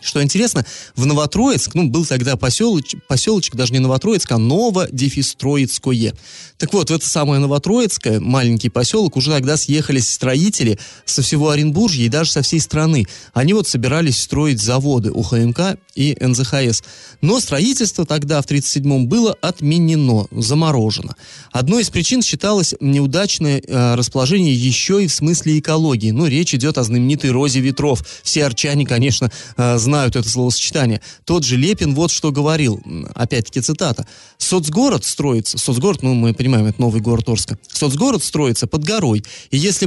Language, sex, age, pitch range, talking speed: Russian, male, 30-49, 125-160 Hz, 145 wpm